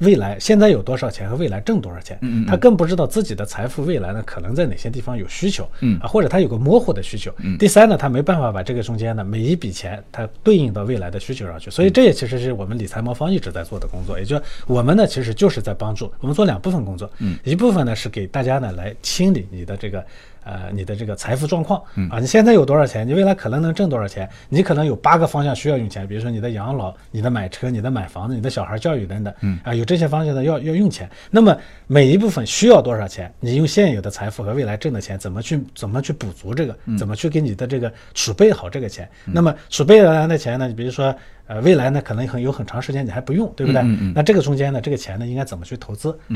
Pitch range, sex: 105-155 Hz, male